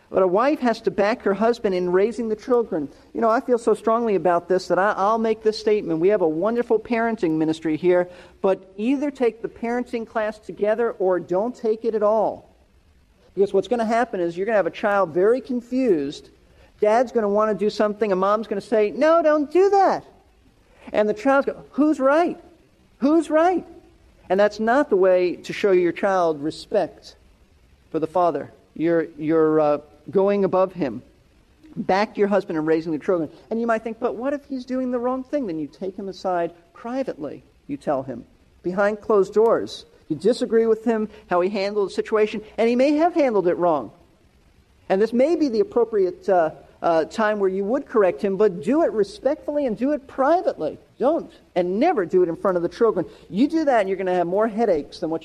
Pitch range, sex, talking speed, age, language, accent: 180-240 Hz, male, 210 wpm, 40-59, English, American